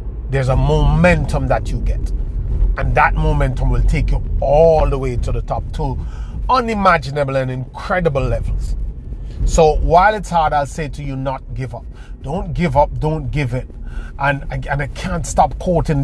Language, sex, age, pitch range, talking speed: English, male, 30-49, 105-145 Hz, 170 wpm